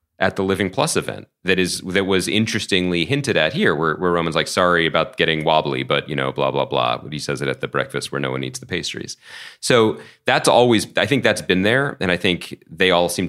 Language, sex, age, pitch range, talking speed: English, male, 30-49, 75-95 Hz, 240 wpm